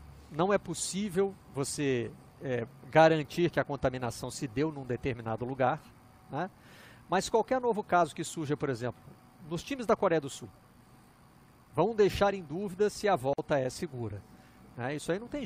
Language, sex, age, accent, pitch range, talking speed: Portuguese, male, 50-69, Brazilian, 125-180 Hz, 160 wpm